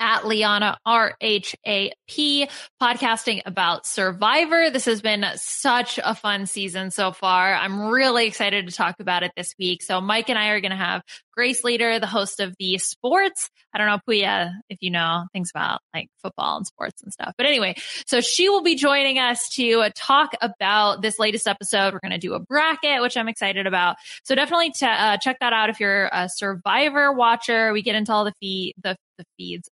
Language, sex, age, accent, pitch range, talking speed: English, female, 10-29, American, 195-245 Hz, 205 wpm